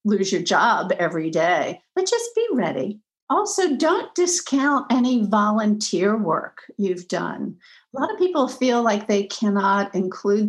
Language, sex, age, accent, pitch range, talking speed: English, female, 50-69, American, 185-230 Hz, 150 wpm